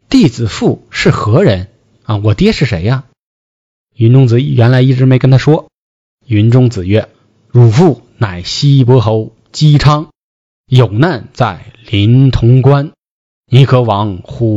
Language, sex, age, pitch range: Chinese, male, 20-39, 105-130 Hz